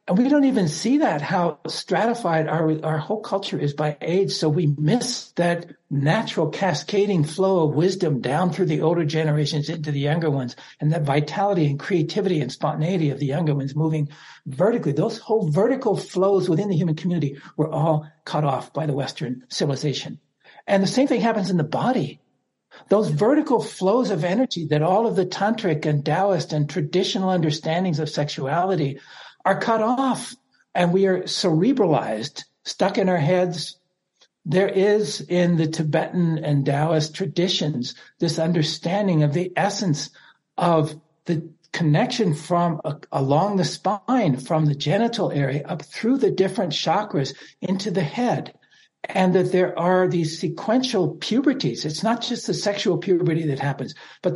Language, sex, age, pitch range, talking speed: English, male, 60-79, 155-195 Hz, 160 wpm